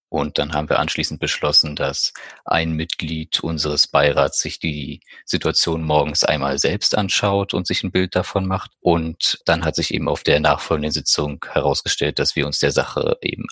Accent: German